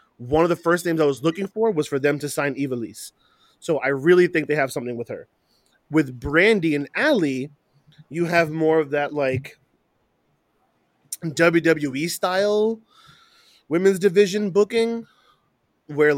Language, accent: English, American